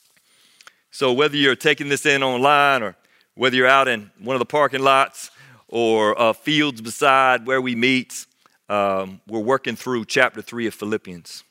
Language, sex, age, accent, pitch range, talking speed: English, male, 40-59, American, 110-135 Hz, 165 wpm